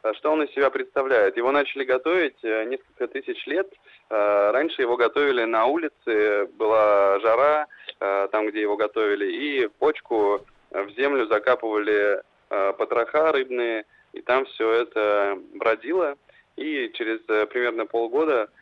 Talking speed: 125 wpm